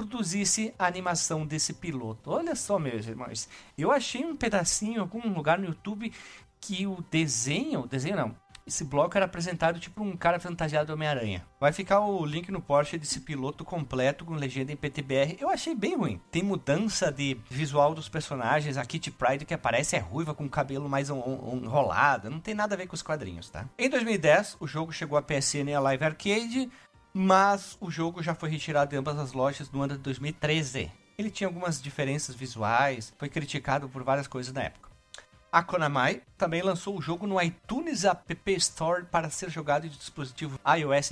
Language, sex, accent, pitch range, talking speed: Portuguese, male, Brazilian, 140-190 Hz, 195 wpm